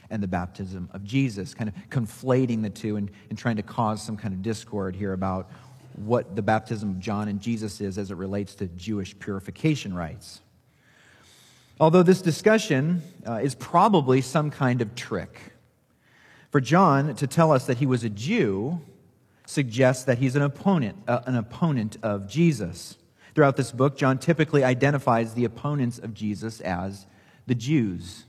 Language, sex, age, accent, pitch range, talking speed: English, male, 40-59, American, 105-140 Hz, 165 wpm